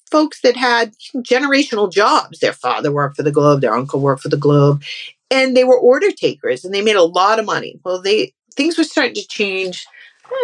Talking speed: 220 wpm